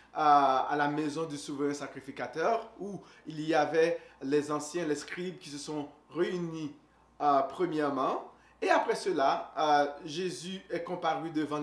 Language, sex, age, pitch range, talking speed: French, male, 30-49, 145-185 Hz, 145 wpm